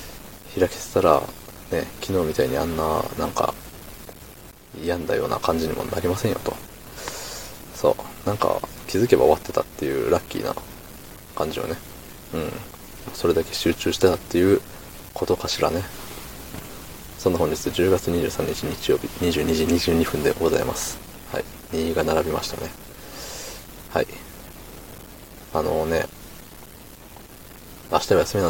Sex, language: male, Japanese